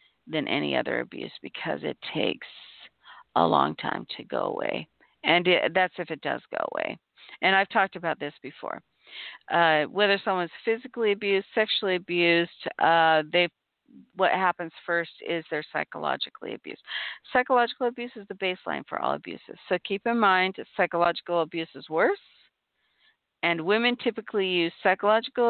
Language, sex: English, female